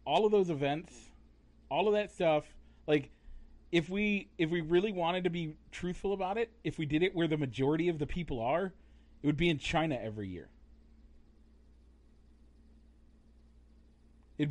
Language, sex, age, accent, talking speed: English, male, 40-59, American, 160 wpm